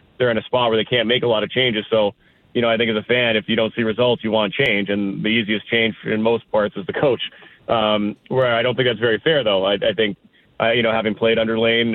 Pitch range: 105-115 Hz